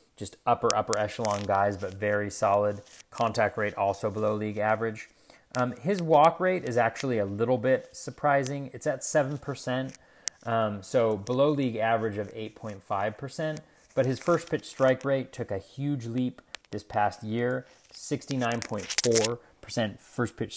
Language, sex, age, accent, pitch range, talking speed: English, male, 30-49, American, 105-130 Hz, 145 wpm